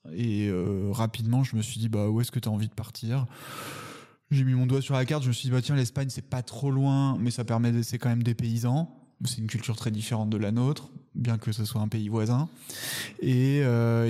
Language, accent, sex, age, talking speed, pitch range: French, French, male, 20-39, 270 wpm, 115-130 Hz